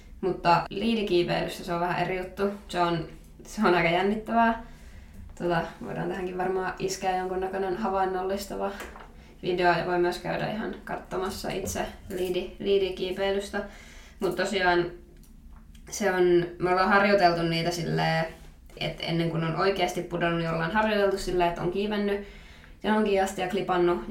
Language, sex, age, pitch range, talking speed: Finnish, female, 20-39, 175-190 Hz, 140 wpm